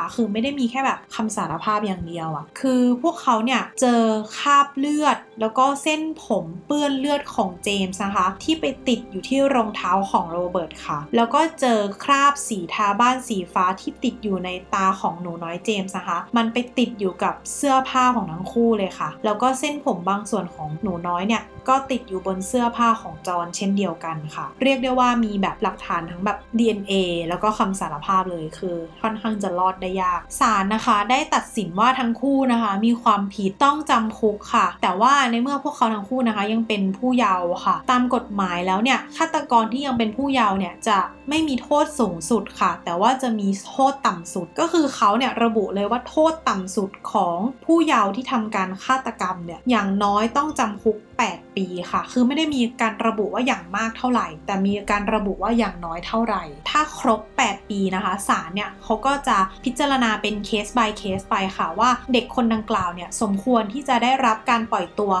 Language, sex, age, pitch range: English, female, 20-39, 195-255 Hz